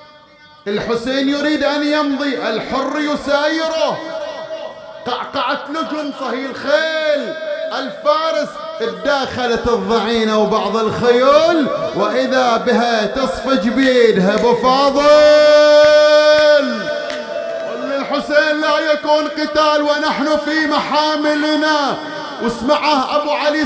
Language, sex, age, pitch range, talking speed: English, male, 30-49, 235-300 Hz, 80 wpm